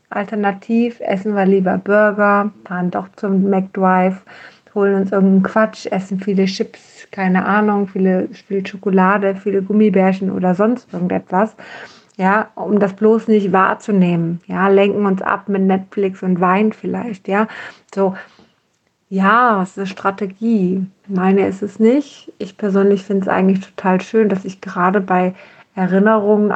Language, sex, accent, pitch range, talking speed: German, female, German, 190-210 Hz, 140 wpm